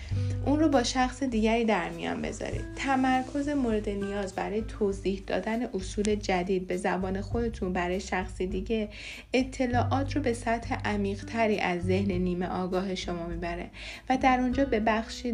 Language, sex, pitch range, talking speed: Persian, female, 180-230 Hz, 150 wpm